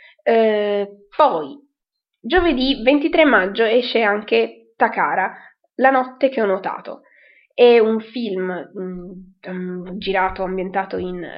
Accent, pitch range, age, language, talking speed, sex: native, 195-270 Hz, 20-39, Italian, 110 wpm, female